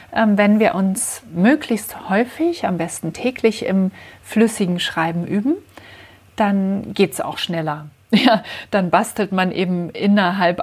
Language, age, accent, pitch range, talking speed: German, 40-59, German, 175-225 Hz, 125 wpm